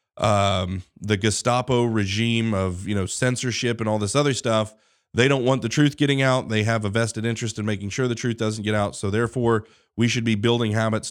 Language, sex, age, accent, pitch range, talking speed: English, male, 30-49, American, 100-120 Hz, 215 wpm